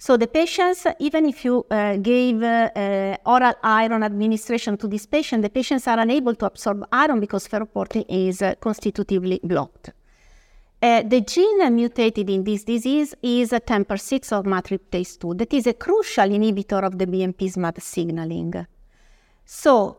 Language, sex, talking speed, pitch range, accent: English, female, 160 wpm, 195-250 Hz, Italian